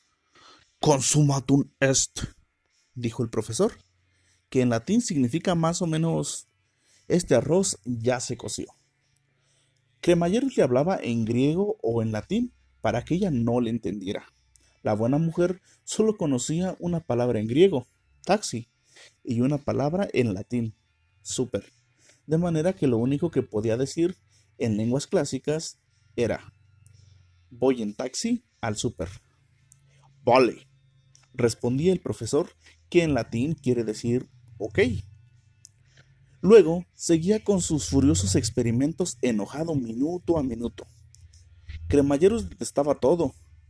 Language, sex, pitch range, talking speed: Spanish, male, 105-155 Hz, 120 wpm